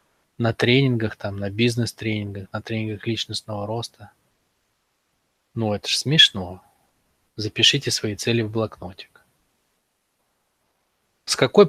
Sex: male